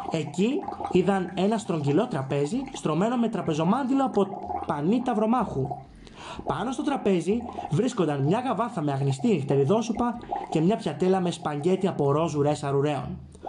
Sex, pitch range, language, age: male, 145-235 Hz, Greek, 20-39